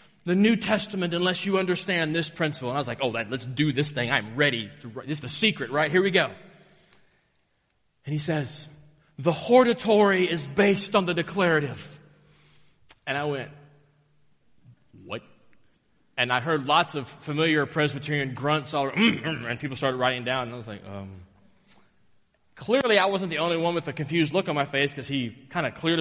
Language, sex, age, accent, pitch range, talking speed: English, male, 30-49, American, 140-190 Hz, 180 wpm